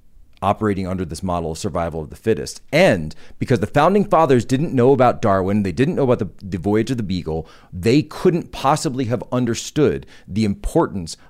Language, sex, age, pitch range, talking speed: English, male, 40-59, 95-115 Hz, 185 wpm